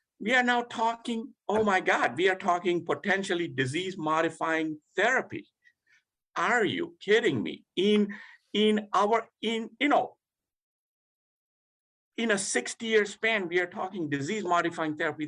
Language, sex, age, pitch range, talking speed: English, male, 50-69, 140-210 Hz, 140 wpm